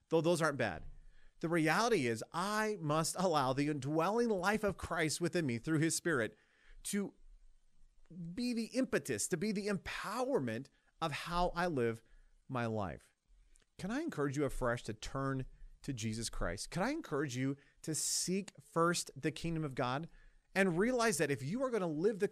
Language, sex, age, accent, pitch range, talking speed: English, male, 30-49, American, 135-195 Hz, 175 wpm